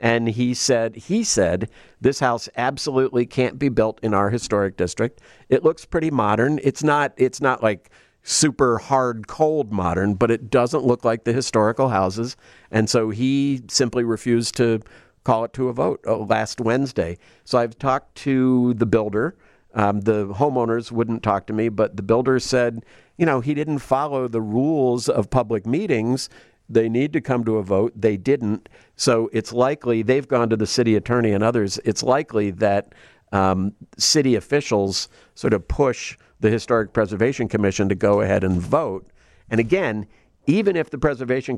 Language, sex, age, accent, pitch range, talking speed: English, male, 50-69, American, 110-130 Hz, 175 wpm